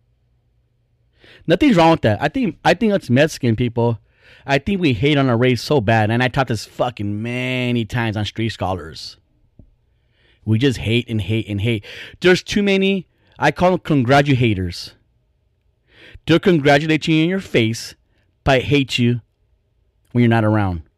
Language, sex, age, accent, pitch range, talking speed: English, male, 30-49, American, 110-145 Hz, 165 wpm